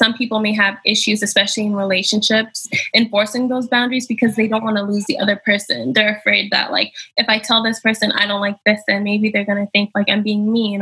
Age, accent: 10-29, American